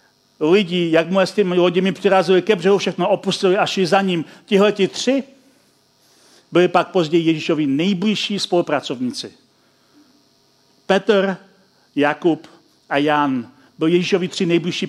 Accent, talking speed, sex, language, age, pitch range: native, 115 wpm, male, Czech, 40-59, 175-225 Hz